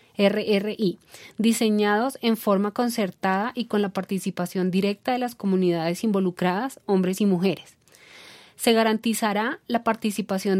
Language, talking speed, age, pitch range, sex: Spanish, 120 wpm, 30-49, 190-225 Hz, female